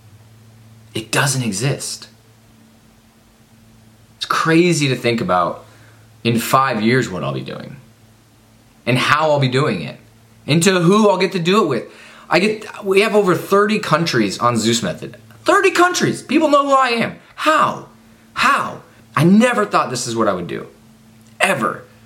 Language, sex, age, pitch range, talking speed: English, male, 20-39, 110-145 Hz, 160 wpm